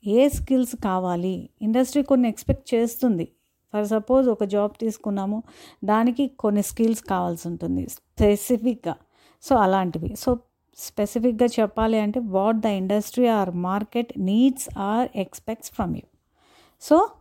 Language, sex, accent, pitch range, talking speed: Telugu, female, native, 210-255 Hz, 120 wpm